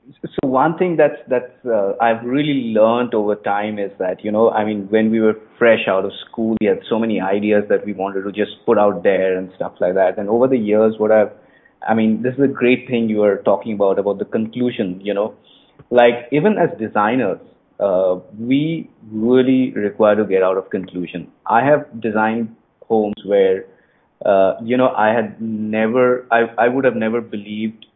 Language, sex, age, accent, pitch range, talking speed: English, male, 30-49, Indian, 100-120 Hz, 200 wpm